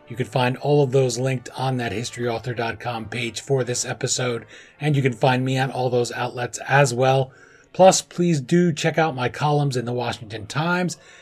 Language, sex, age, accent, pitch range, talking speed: English, male, 30-49, American, 125-165 Hz, 195 wpm